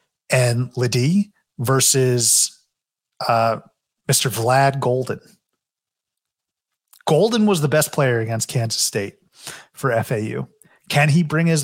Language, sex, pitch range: English, male, 120-150 Hz